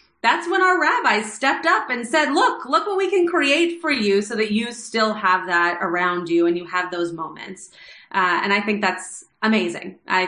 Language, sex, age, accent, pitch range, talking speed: English, female, 30-49, American, 190-250 Hz, 210 wpm